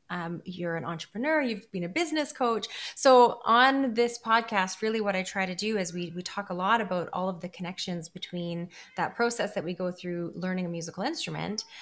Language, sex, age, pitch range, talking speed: English, female, 30-49, 175-220 Hz, 210 wpm